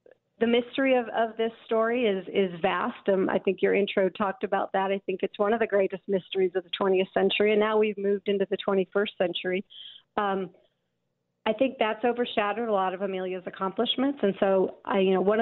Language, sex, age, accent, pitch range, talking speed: English, female, 40-59, American, 190-225 Hz, 205 wpm